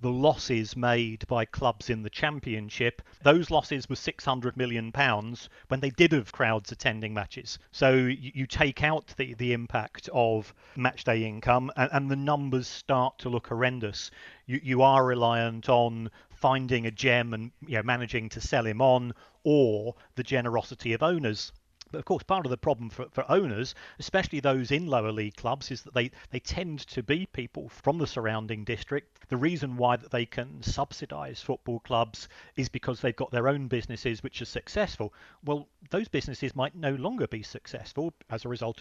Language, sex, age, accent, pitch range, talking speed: English, male, 40-59, British, 115-140 Hz, 175 wpm